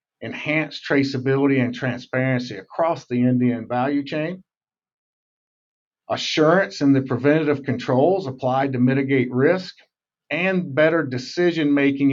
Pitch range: 125-150 Hz